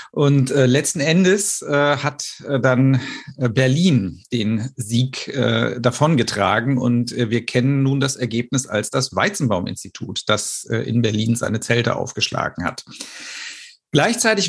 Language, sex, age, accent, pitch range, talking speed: German, male, 50-69, German, 125-145 Hz, 110 wpm